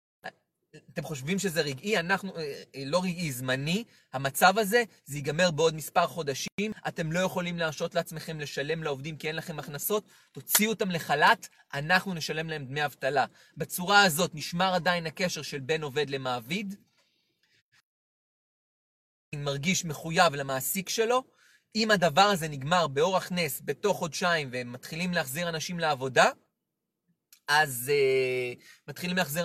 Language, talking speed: English, 125 wpm